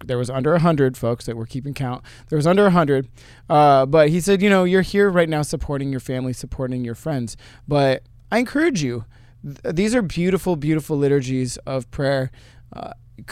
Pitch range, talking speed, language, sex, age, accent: 120-160 Hz, 195 wpm, English, male, 20-39, American